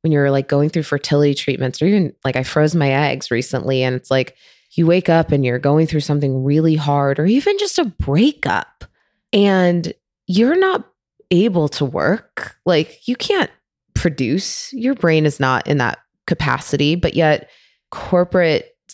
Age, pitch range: 20-39, 145-190 Hz